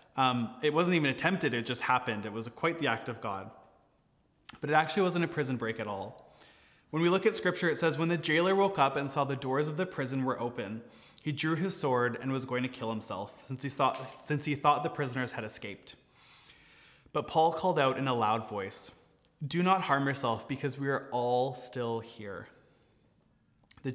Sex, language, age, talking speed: male, English, 20-39, 205 wpm